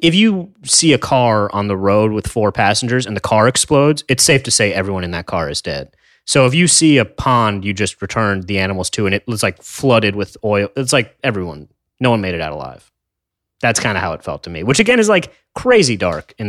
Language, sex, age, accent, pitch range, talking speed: English, male, 30-49, American, 100-140 Hz, 250 wpm